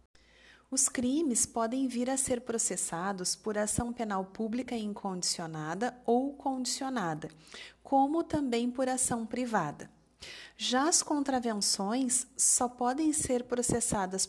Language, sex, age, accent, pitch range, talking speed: Portuguese, female, 30-49, Brazilian, 205-255 Hz, 110 wpm